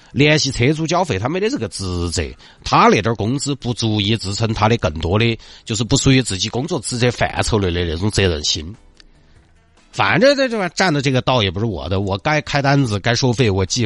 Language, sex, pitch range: Chinese, male, 95-125 Hz